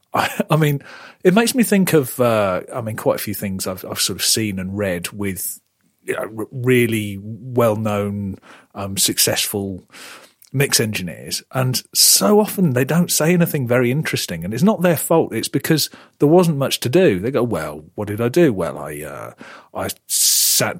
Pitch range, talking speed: 110-150 Hz, 180 wpm